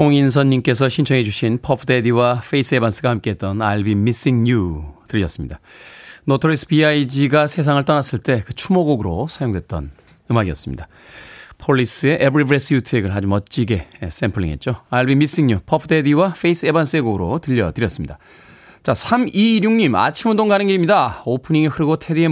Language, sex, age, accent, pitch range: Korean, male, 30-49, native, 115-165 Hz